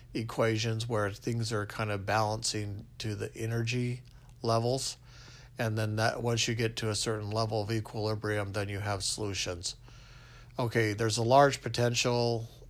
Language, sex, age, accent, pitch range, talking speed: English, male, 50-69, American, 110-125 Hz, 150 wpm